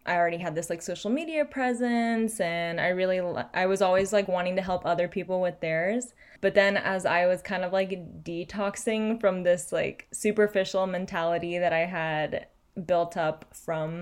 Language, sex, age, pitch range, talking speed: English, female, 10-29, 170-195 Hz, 180 wpm